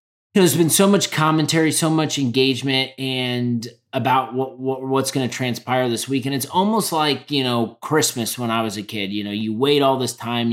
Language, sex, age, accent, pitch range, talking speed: English, male, 30-49, American, 120-145 Hz, 220 wpm